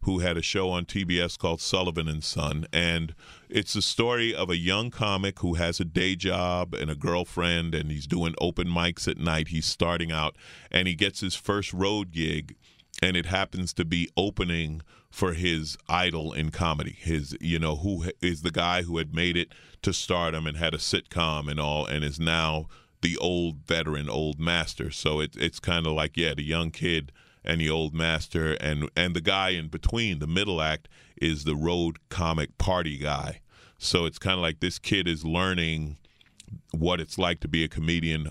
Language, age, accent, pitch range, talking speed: English, 30-49, American, 80-90 Hz, 195 wpm